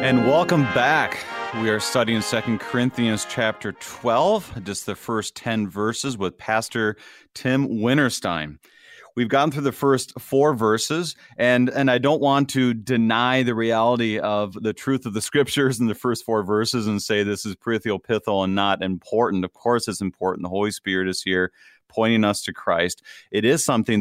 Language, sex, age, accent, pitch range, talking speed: English, male, 30-49, American, 105-125 Hz, 175 wpm